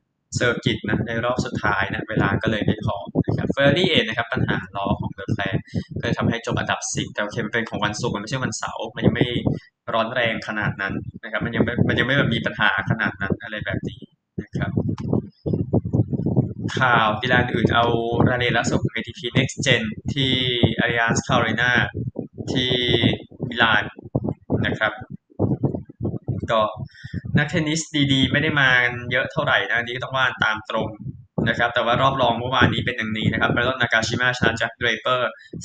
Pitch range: 115-130 Hz